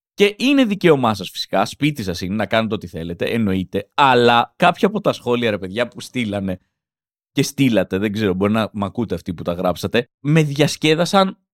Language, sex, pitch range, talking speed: Greek, male, 120-200 Hz, 185 wpm